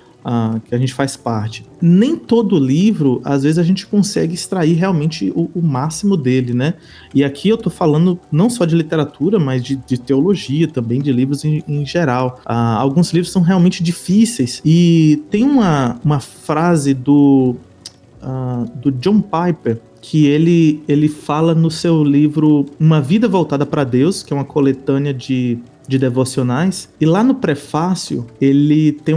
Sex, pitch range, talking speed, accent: male, 135-180 Hz, 160 wpm, Brazilian